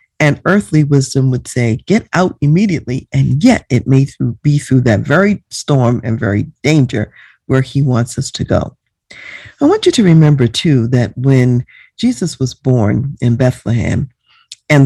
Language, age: English, 50-69